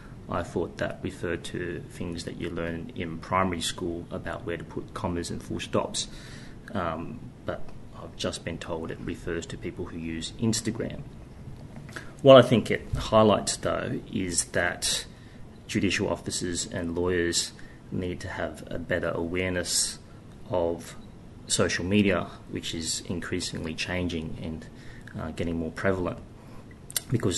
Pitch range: 85-110 Hz